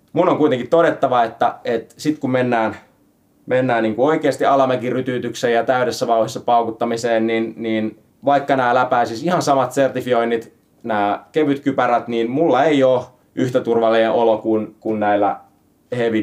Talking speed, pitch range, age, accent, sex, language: 150 wpm, 110-130 Hz, 30-49, native, male, Finnish